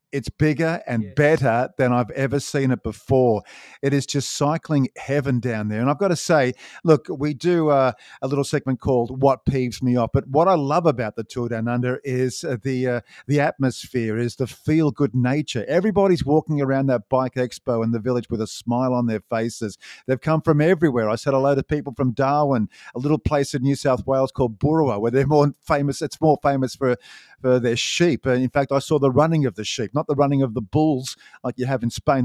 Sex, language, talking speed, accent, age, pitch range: male, English, 225 wpm, Australian, 50-69, 125-155 Hz